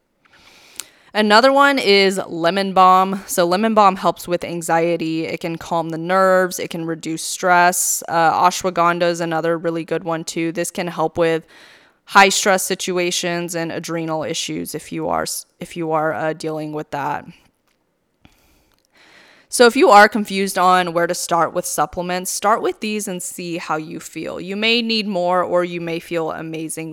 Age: 20-39